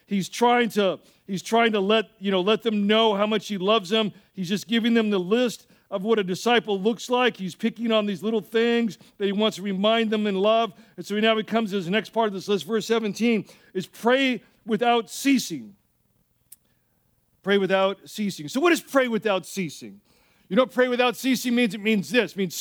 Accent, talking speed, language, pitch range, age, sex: American, 220 wpm, English, 195-240 Hz, 50-69, male